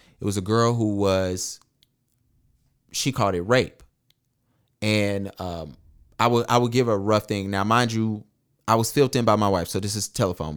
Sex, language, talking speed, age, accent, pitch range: male, English, 195 wpm, 30-49, American, 95-125 Hz